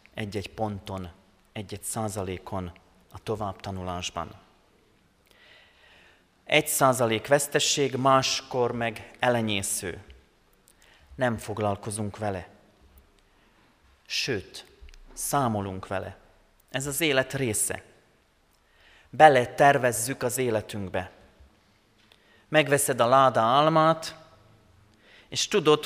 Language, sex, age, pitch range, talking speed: Hungarian, male, 30-49, 105-140 Hz, 75 wpm